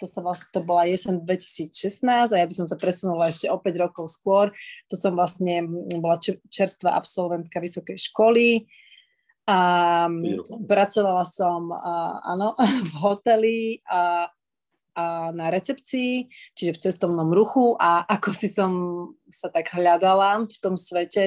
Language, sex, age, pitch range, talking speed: Slovak, female, 30-49, 175-205 Hz, 145 wpm